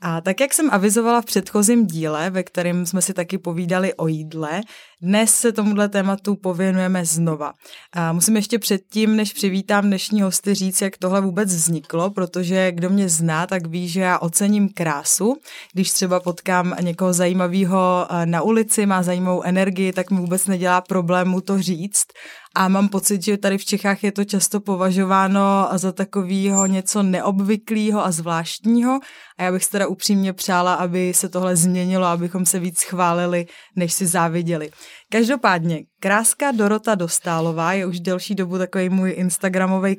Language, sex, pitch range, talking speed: Czech, female, 180-200 Hz, 160 wpm